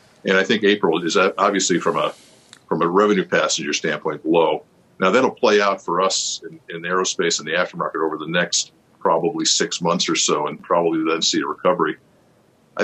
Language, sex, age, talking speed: English, male, 50-69, 190 wpm